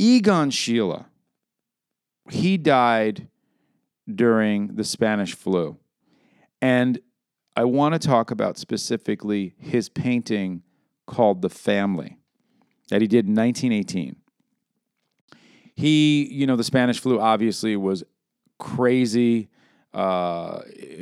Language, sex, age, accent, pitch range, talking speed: English, male, 40-59, American, 105-130 Hz, 100 wpm